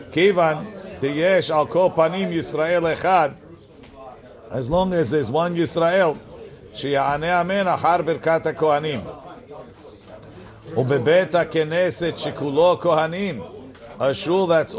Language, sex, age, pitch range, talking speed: English, male, 50-69, 140-175 Hz, 115 wpm